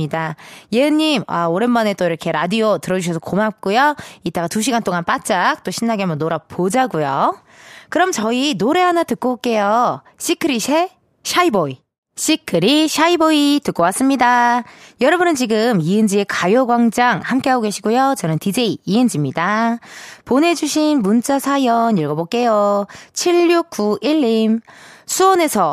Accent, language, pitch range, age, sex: native, Korean, 195-295 Hz, 20-39, female